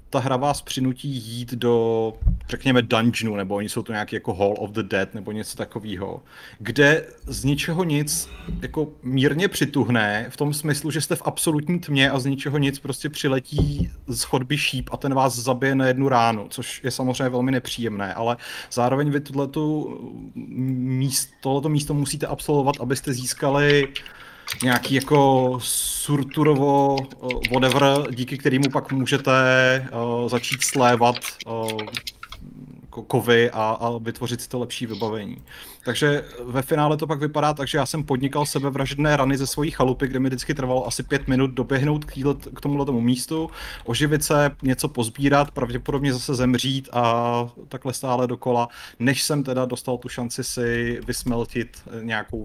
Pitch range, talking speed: 120-140 Hz, 155 wpm